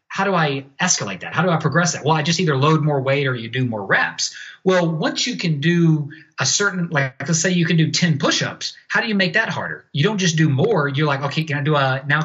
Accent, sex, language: American, male, English